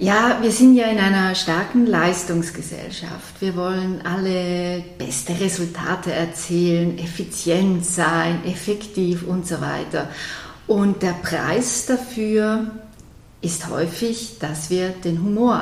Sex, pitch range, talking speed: female, 170-215 Hz, 115 wpm